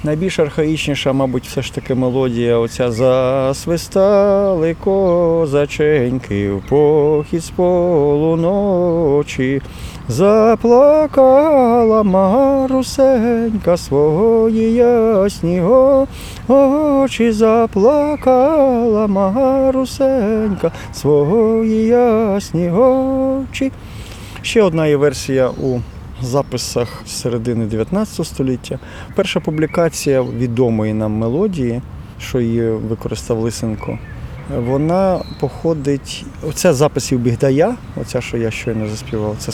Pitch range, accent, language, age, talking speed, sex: 115-195 Hz, native, Ukrainian, 20-39, 80 wpm, male